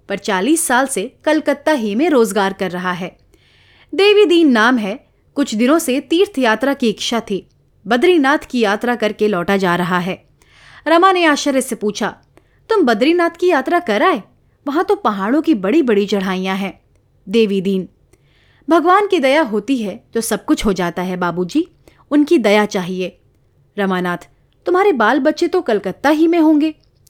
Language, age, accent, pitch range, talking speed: Hindi, 30-49, native, 200-330 Hz, 160 wpm